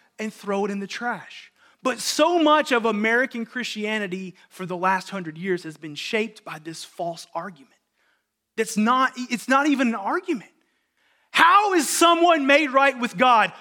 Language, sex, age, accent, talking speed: English, male, 30-49, American, 170 wpm